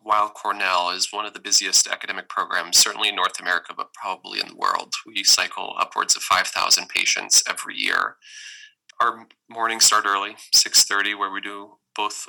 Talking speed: 170 wpm